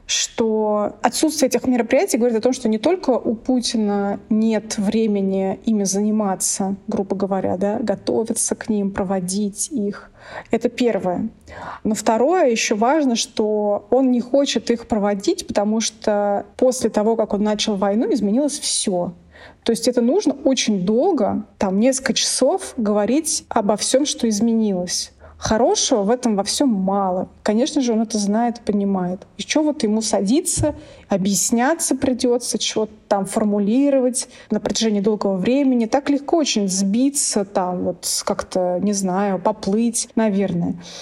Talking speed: 145 wpm